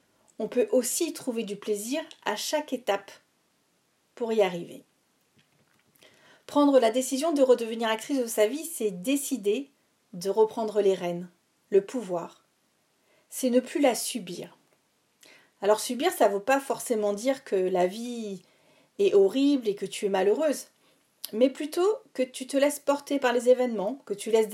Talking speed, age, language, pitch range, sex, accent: 160 wpm, 40-59, French, 210-275 Hz, female, French